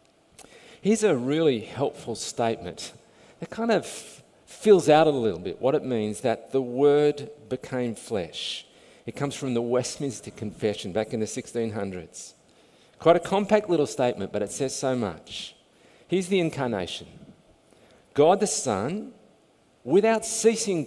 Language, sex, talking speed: English, male, 140 wpm